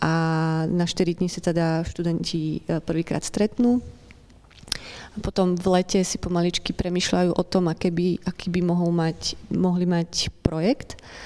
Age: 30-49